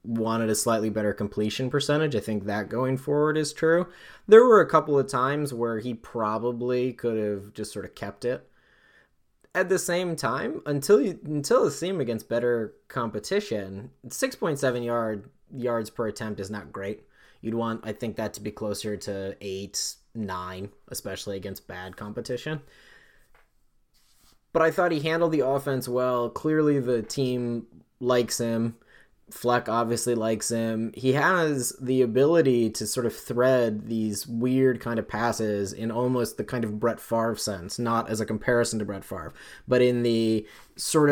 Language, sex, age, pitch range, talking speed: English, male, 20-39, 105-130 Hz, 165 wpm